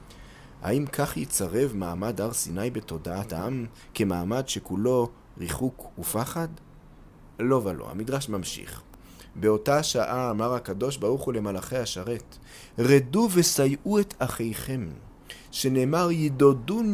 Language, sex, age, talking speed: Hebrew, male, 30-49, 105 wpm